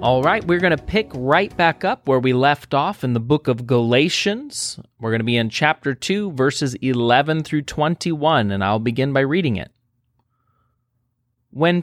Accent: American